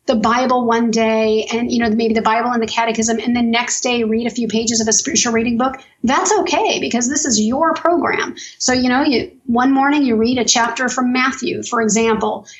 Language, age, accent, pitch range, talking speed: English, 30-49, American, 230-265 Hz, 225 wpm